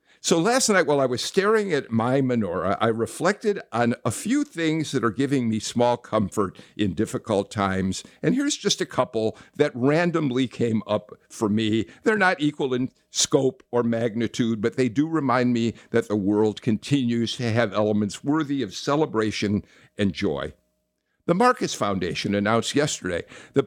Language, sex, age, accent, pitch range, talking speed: English, male, 50-69, American, 110-150 Hz, 165 wpm